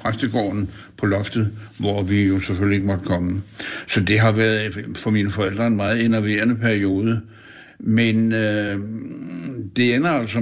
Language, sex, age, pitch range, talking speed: Danish, male, 60-79, 105-125 Hz, 150 wpm